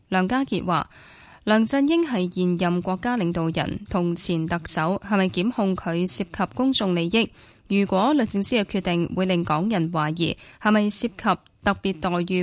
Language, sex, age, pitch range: Chinese, female, 10-29, 175-230 Hz